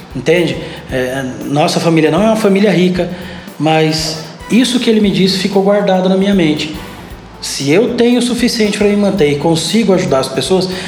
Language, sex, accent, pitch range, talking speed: Portuguese, male, Brazilian, 165-200 Hz, 175 wpm